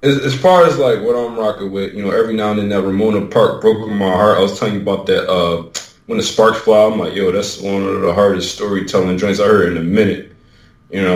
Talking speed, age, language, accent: 260 wpm, 20-39, English, American